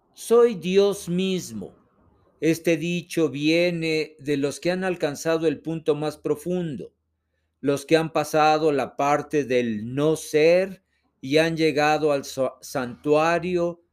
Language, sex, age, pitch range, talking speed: Spanish, male, 50-69, 130-175 Hz, 125 wpm